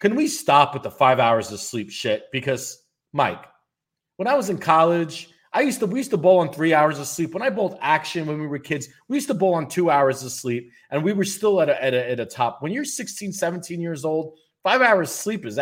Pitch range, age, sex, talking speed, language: 105-160 Hz, 30-49, male, 240 wpm, English